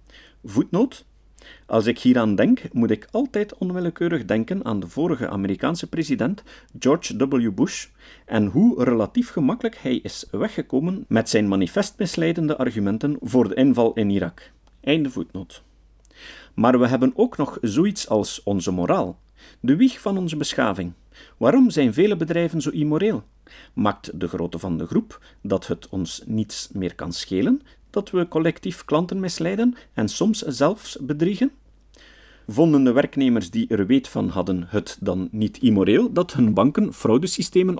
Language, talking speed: Dutch, 150 wpm